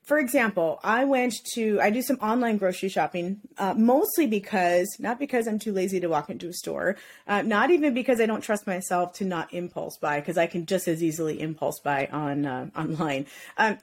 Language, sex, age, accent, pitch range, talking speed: English, female, 30-49, American, 185-255 Hz, 210 wpm